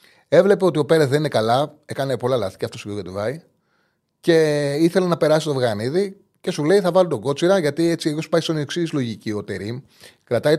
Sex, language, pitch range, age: male, Greek, 110-165 Hz, 30-49